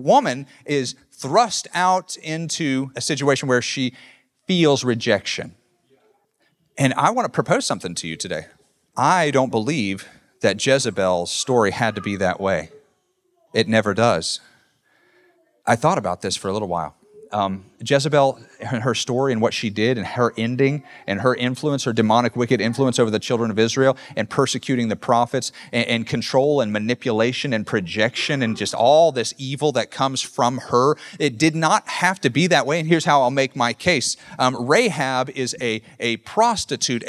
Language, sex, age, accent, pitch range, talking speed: English, male, 30-49, American, 120-160 Hz, 175 wpm